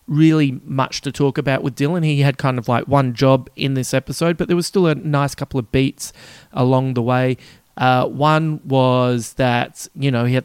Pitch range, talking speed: 115-140 Hz, 215 wpm